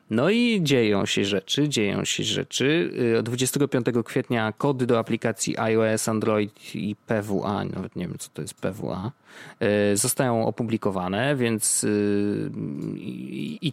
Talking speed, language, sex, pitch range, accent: 120 wpm, Polish, male, 110-150 Hz, native